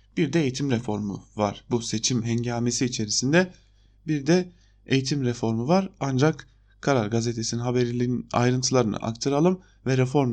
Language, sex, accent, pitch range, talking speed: German, male, Turkish, 115-140 Hz, 130 wpm